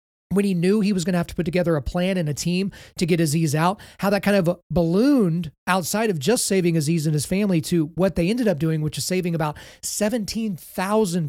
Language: English